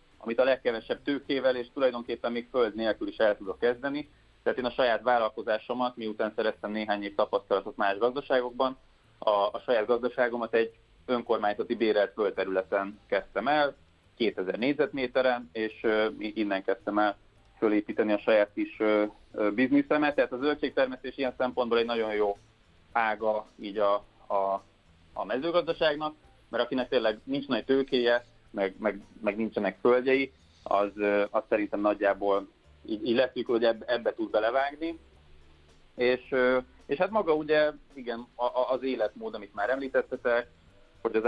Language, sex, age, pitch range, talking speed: Hungarian, male, 30-49, 105-130 Hz, 140 wpm